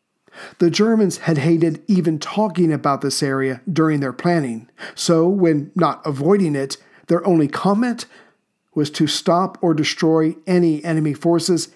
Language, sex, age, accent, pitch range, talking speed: English, male, 50-69, American, 150-175 Hz, 145 wpm